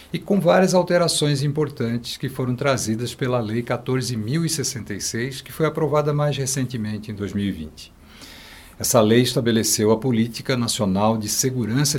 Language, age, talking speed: Portuguese, 60-79, 130 wpm